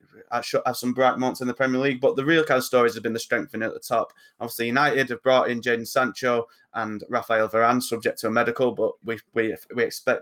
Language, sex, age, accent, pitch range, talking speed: English, male, 20-39, British, 110-130 Hz, 235 wpm